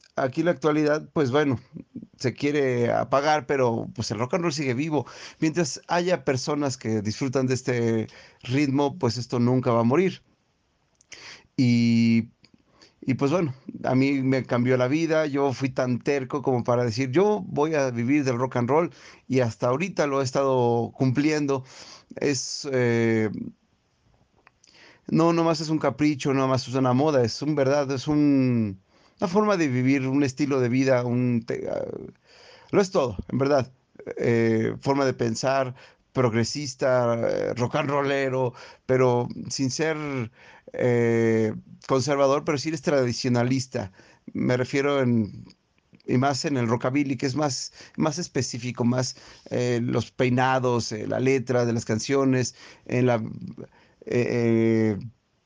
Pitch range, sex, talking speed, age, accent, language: 120-145 Hz, male, 155 wpm, 40-59, Mexican, Spanish